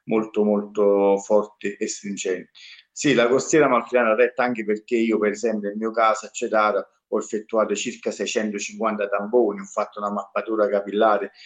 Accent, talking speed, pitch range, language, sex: native, 155 wpm, 100-115 Hz, Italian, male